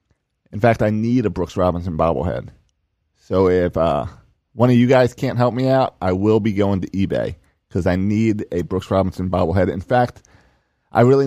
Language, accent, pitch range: English, American, 95-120 Hz